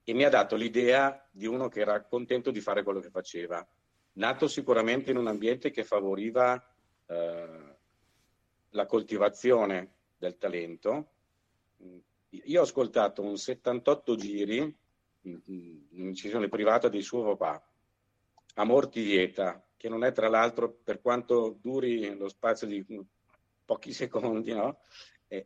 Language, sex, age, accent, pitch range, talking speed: Italian, male, 50-69, native, 95-120 Hz, 130 wpm